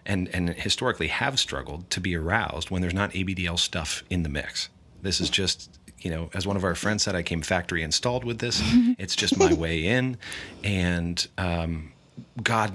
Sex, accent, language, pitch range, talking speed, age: male, American, English, 80-95 Hz, 195 wpm, 40-59